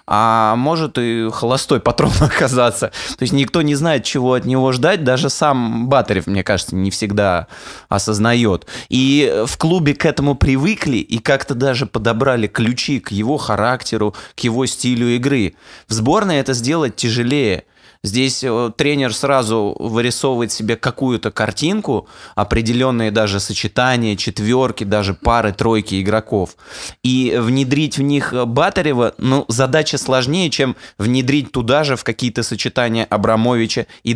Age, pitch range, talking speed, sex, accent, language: 20-39, 105-130 Hz, 135 wpm, male, native, Russian